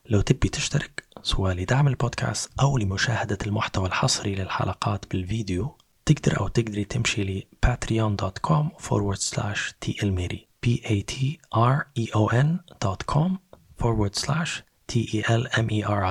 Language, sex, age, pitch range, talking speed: Arabic, male, 20-39, 100-125 Hz, 130 wpm